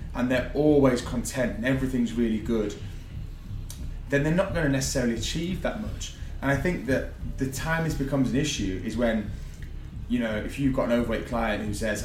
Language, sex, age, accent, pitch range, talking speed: English, male, 20-39, British, 95-125 Hz, 190 wpm